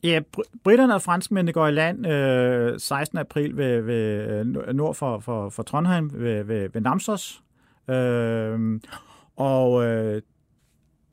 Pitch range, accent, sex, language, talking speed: 115-150 Hz, native, male, Danish, 135 wpm